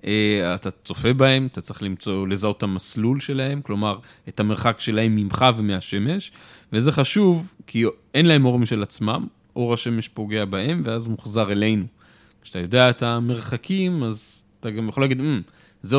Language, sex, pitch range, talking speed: Hebrew, male, 105-135 Hz, 160 wpm